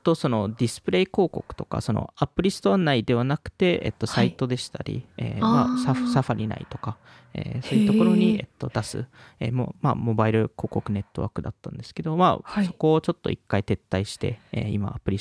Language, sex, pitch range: Japanese, male, 110-160 Hz